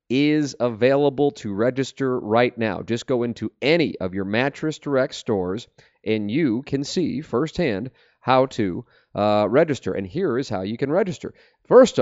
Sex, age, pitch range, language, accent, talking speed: male, 40-59, 110-140 Hz, English, American, 160 wpm